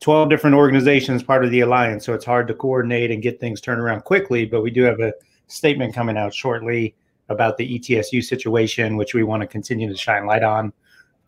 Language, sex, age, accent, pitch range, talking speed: English, male, 30-49, American, 110-125 Hz, 220 wpm